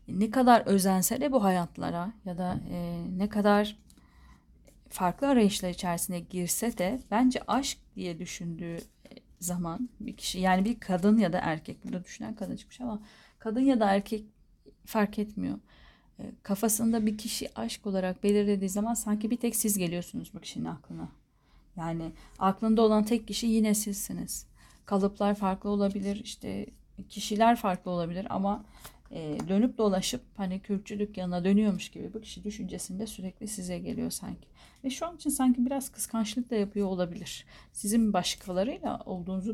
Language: Turkish